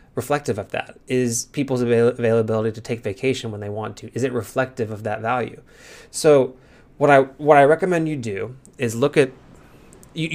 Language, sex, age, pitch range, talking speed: English, male, 20-39, 115-140 Hz, 180 wpm